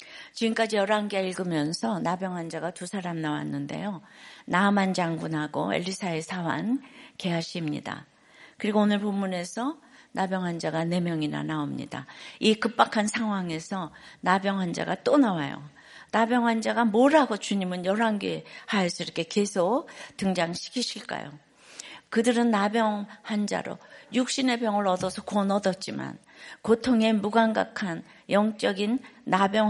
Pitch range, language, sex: 175-225 Hz, Korean, female